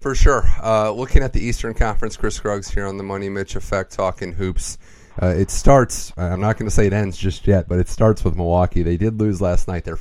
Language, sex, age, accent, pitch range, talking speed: English, male, 30-49, American, 85-105 Hz, 245 wpm